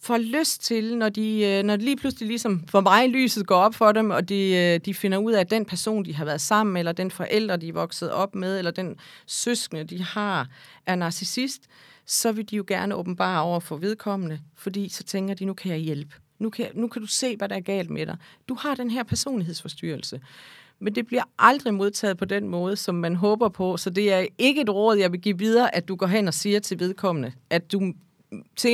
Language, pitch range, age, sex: Danish, 180-220 Hz, 40-59, female